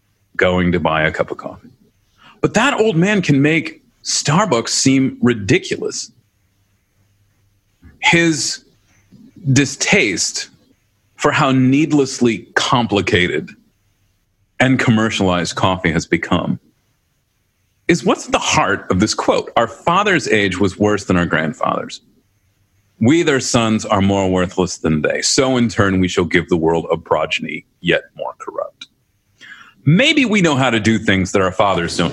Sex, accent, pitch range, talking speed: male, American, 100-150 Hz, 140 wpm